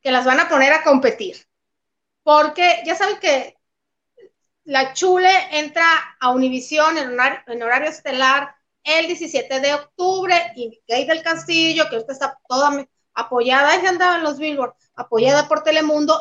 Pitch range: 255-320 Hz